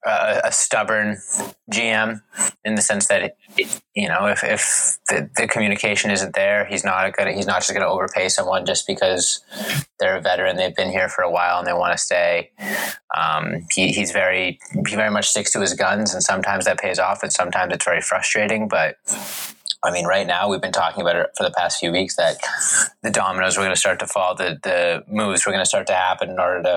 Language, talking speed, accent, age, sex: English, 230 wpm, American, 20-39, male